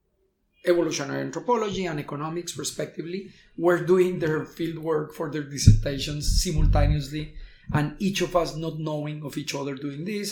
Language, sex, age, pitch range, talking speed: English, male, 30-49, 140-175 Hz, 145 wpm